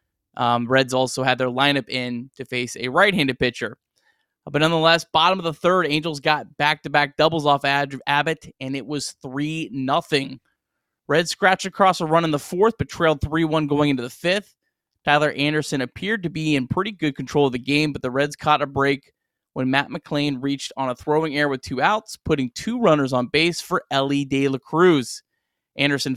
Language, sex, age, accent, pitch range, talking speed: English, male, 20-39, American, 135-165 Hz, 190 wpm